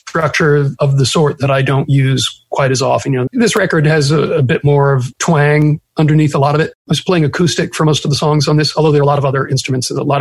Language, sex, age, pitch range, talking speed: English, male, 40-59, 135-160 Hz, 280 wpm